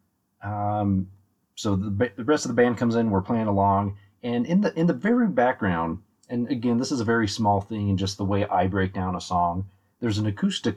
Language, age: English, 30-49